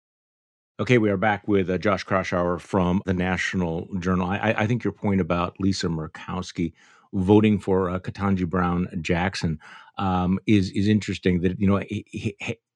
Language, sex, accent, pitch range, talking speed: English, male, American, 95-110 Hz, 165 wpm